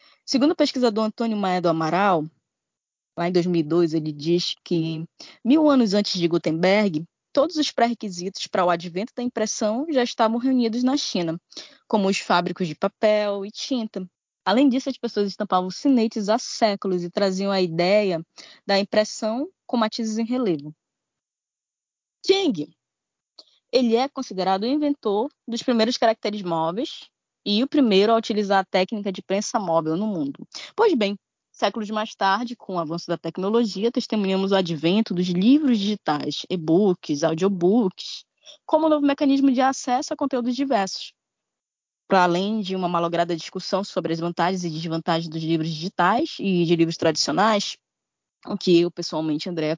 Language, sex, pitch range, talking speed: Portuguese, female, 175-245 Hz, 150 wpm